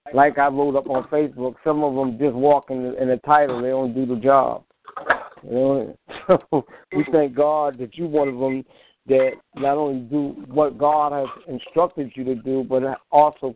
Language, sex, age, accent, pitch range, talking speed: English, male, 50-69, American, 130-170 Hz, 215 wpm